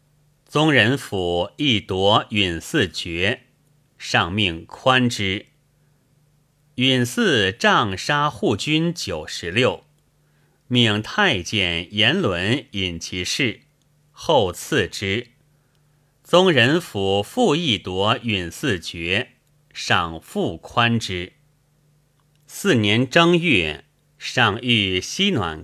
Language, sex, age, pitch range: Chinese, male, 30-49, 100-150 Hz